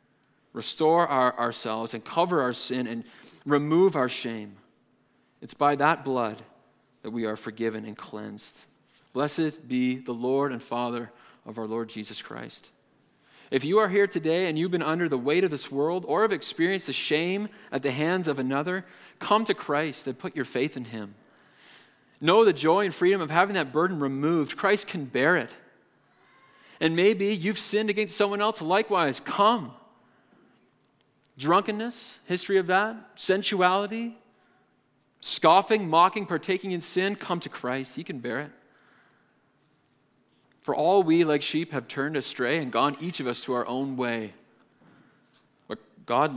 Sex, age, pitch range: male, 30-49, 125-180 Hz